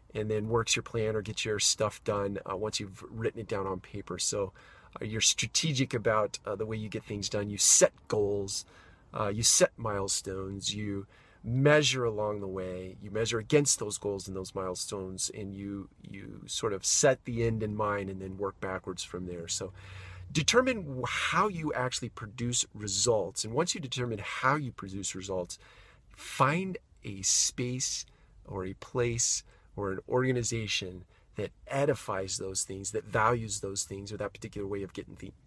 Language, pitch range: English, 95-120 Hz